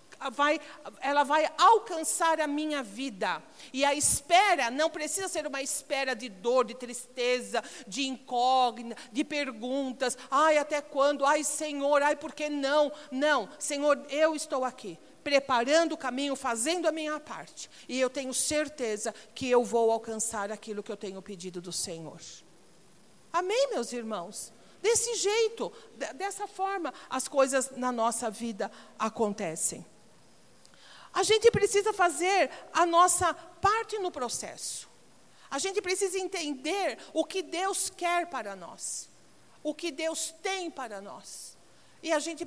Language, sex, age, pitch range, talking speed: Portuguese, female, 50-69, 250-330 Hz, 140 wpm